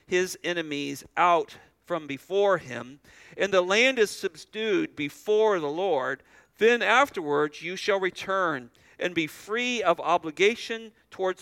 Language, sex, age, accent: English, male, 50-69, American